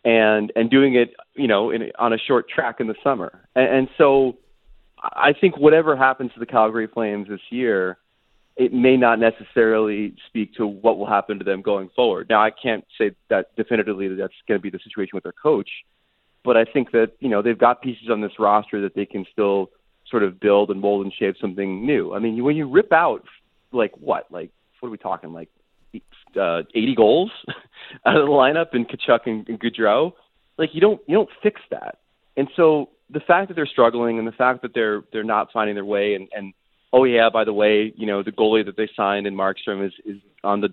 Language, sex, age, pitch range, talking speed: English, male, 30-49, 100-125 Hz, 220 wpm